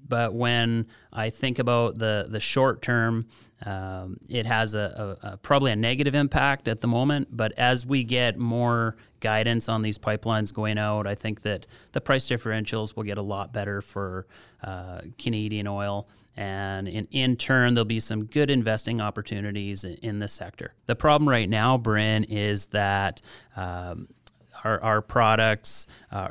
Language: English